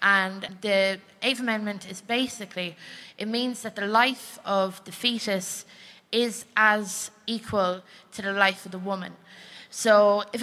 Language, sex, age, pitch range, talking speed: English, female, 20-39, 190-225 Hz, 145 wpm